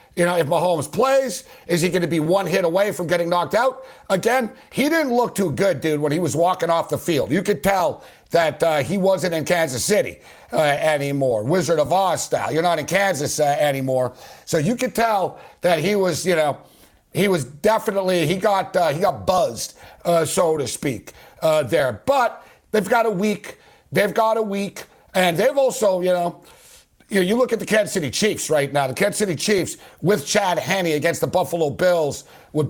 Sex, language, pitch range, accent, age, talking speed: male, English, 155-200 Hz, American, 50-69, 210 wpm